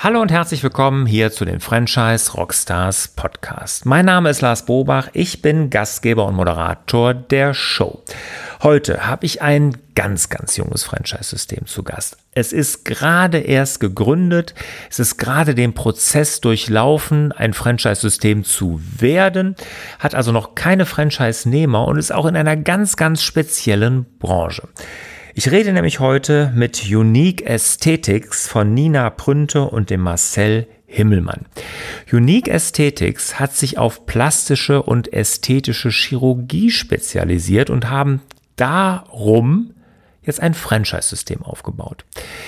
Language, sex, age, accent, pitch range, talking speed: German, male, 40-59, German, 110-155 Hz, 125 wpm